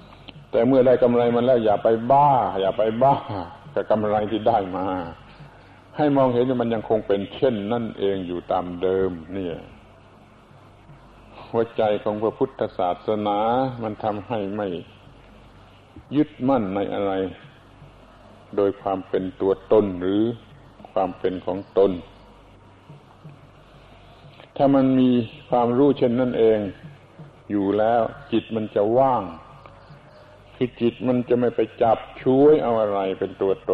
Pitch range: 100-130 Hz